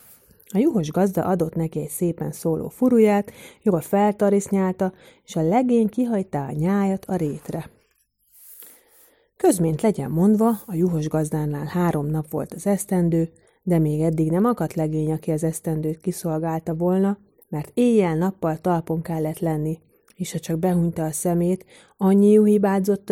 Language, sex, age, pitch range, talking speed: Hungarian, female, 30-49, 160-215 Hz, 140 wpm